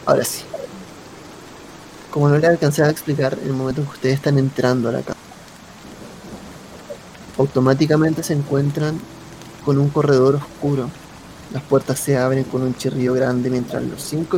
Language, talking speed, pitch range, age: Spanish, 155 wpm, 130-155 Hz, 20-39